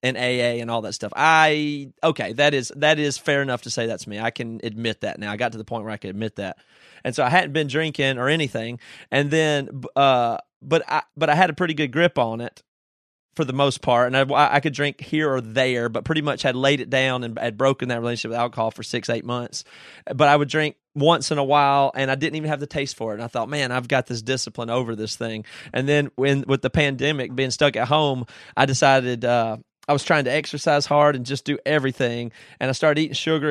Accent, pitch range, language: American, 120-145 Hz, English